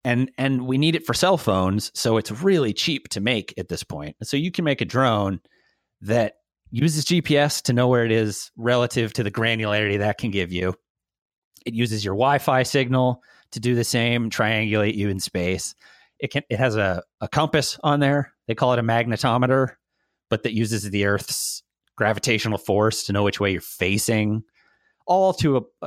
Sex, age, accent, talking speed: male, 30-49, American, 195 wpm